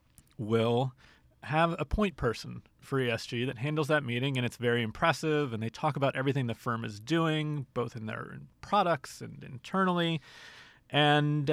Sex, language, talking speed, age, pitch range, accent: male, English, 160 wpm, 30-49, 120-150 Hz, American